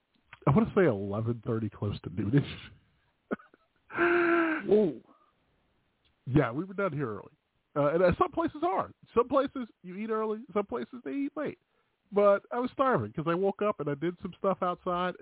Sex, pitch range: male, 115-195 Hz